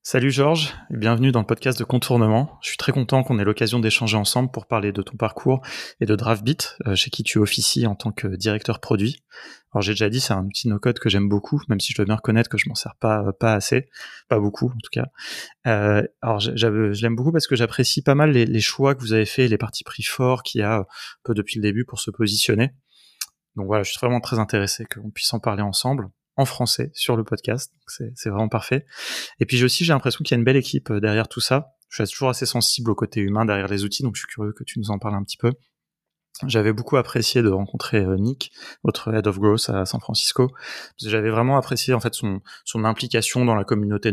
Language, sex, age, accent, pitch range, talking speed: French, male, 20-39, French, 105-125 Hz, 245 wpm